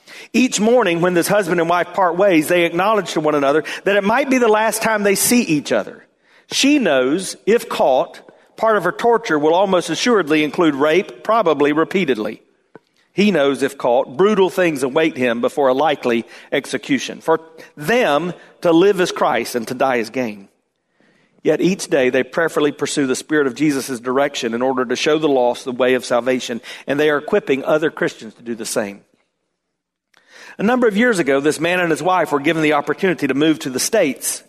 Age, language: 40-59, English